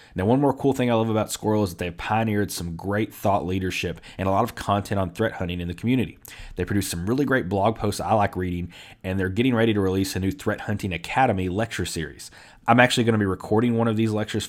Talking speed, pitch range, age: 255 wpm, 95-120 Hz, 30-49